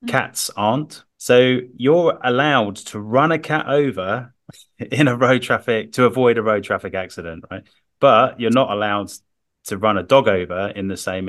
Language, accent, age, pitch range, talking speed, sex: English, British, 30-49, 95-125 Hz, 175 wpm, male